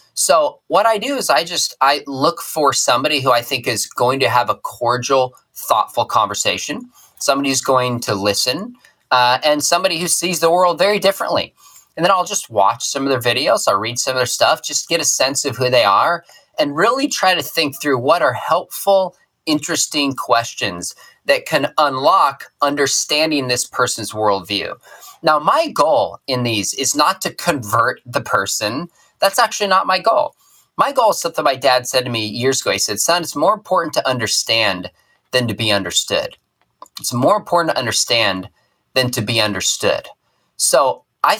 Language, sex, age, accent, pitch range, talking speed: English, male, 20-39, American, 120-170 Hz, 185 wpm